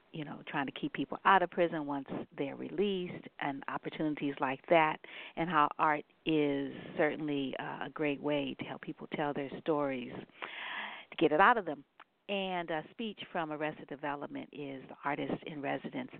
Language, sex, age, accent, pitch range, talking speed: English, female, 50-69, American, 145-185 Hz, 175 wpm